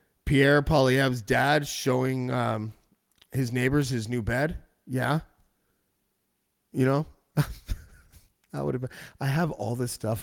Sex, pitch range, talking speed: male, 110-145 Hz, 105 wpm